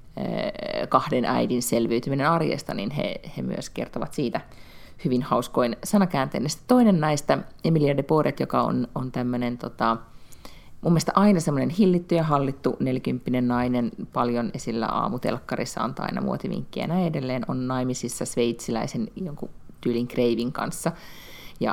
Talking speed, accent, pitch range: 135 wpm, native, 125-175 Hz